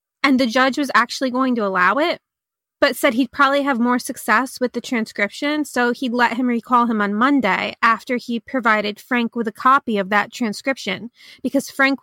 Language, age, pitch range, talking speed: English, 20-39, 225-265 Hz, 200 wpm